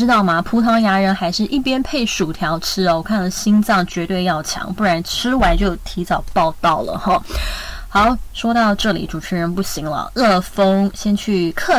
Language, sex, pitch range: Chinese, female, 180-235 Hz